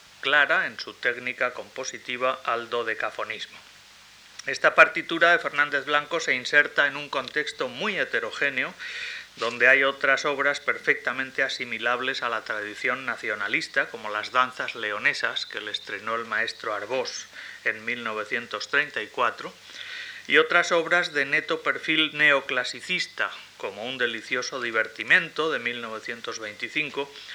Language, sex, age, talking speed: Spanish, male, 30-49, 120 wpm